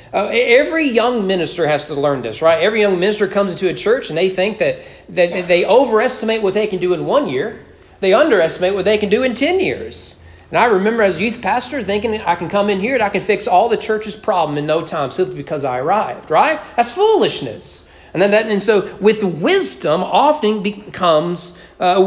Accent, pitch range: American, 170-245 Hz